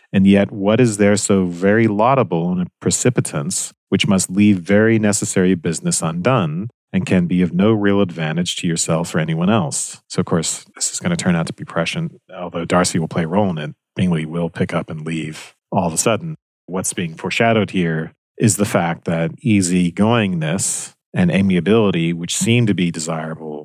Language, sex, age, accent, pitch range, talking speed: English, male, 40-59, American, 85-115 Hz, 195 wpm